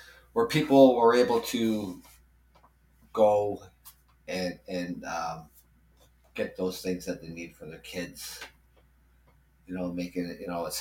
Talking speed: 140 wpm